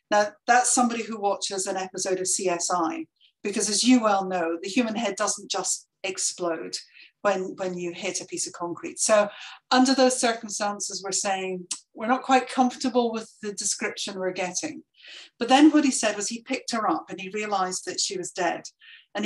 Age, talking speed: 40-59, 190 wpm